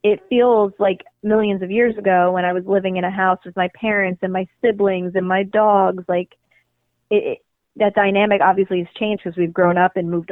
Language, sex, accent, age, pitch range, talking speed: English, female, American, 20-39, 180-225 Hz, 215 wpm